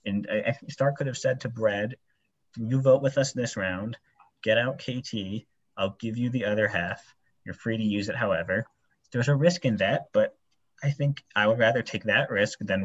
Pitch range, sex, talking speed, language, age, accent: 105-135 Hz, male, 200 wpm, English, 30-49, American